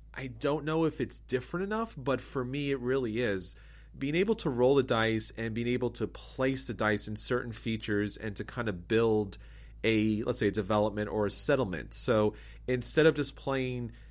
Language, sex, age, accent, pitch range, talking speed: English, male, 30-49, American, 105-130 Hz, 200 wpm